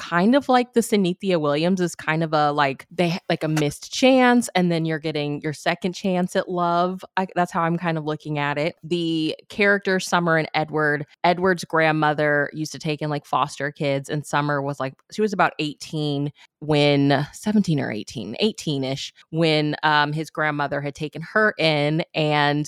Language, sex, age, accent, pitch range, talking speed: English, female, 20-39, American, 145-175 Hz, 185 wpm